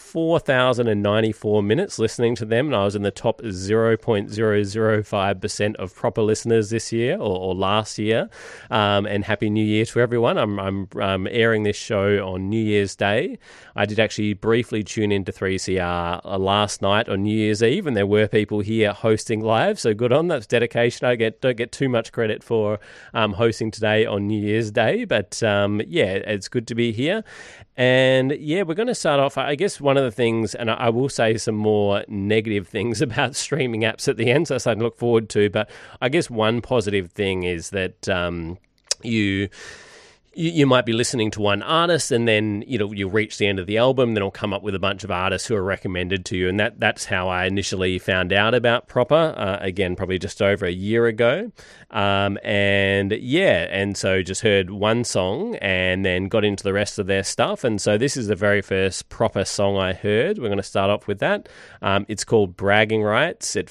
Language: English